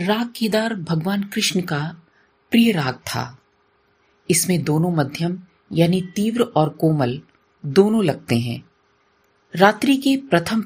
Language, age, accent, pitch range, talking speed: Hindi, 40-59, native, 145-210 Hz, 120 wpm